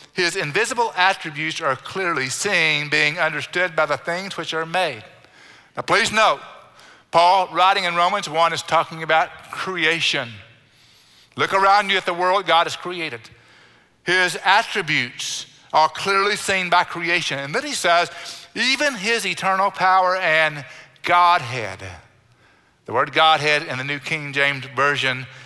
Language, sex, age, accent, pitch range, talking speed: English, male, 50-69, American, 140-175 Hz, 145 wpm